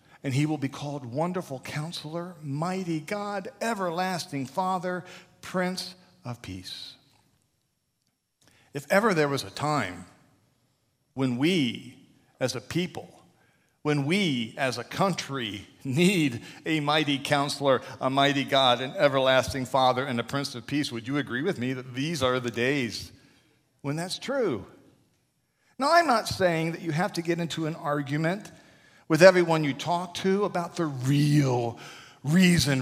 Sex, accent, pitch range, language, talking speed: male, American, 130-195 Hz, English, 145 wpm